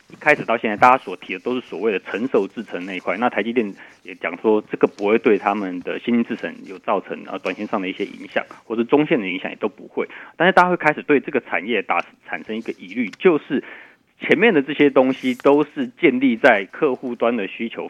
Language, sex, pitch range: Chinese, male, 110-155 Hz